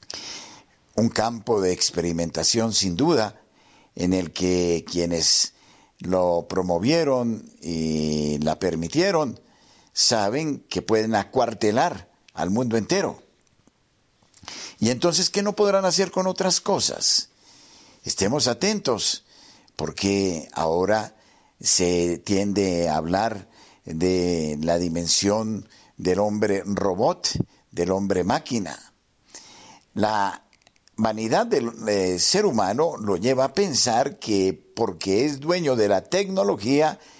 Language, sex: Spanish, male